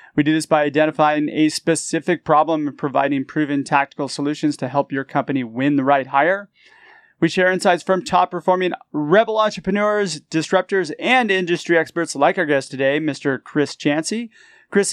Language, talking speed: English, 160 wpm